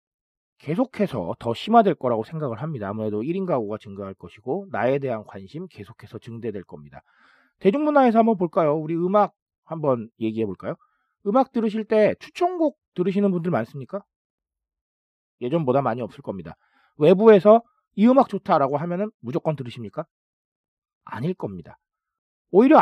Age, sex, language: 40-59, male, Korean